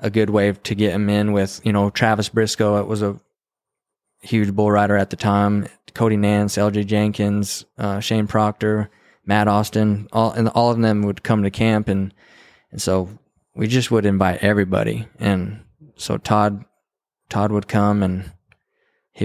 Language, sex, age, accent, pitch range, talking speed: English, male, 20-39, American, 100-115 Hz, 170 wpm